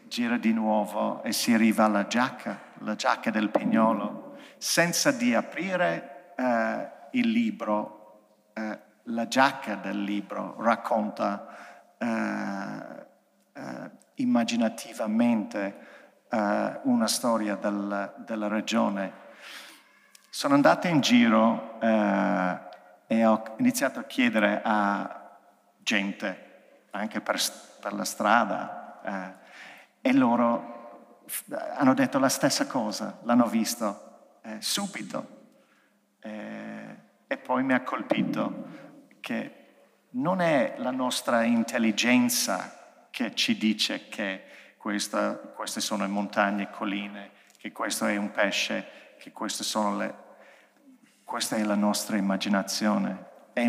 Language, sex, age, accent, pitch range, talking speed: Italian, male, 50-69, native, 105-175 Hz, 110 wpm